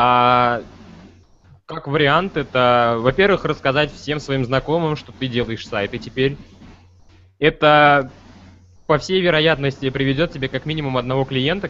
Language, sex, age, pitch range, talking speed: Russian, male, 20-39, 110-145 Hz, 125 wpm